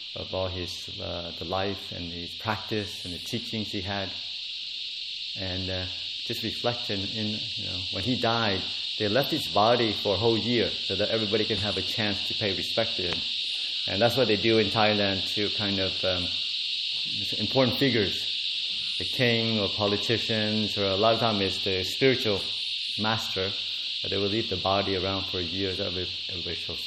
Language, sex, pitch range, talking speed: English, male, 95-115 Hz, 180 wpm